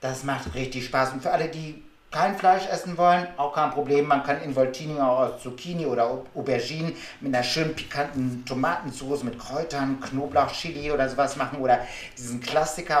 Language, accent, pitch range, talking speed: German, German, 130-155 Hz, 175 wpm